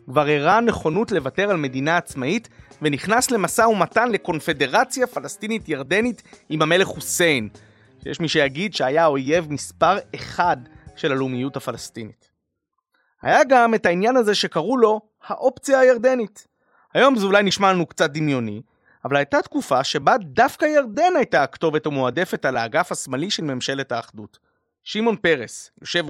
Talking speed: 140 wpm